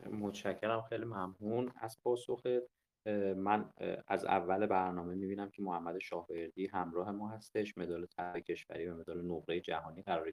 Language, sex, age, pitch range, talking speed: Persian, male, 30-49, 85-110 Hz, 140 wpm